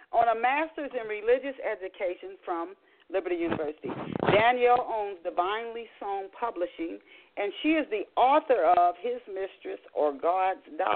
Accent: American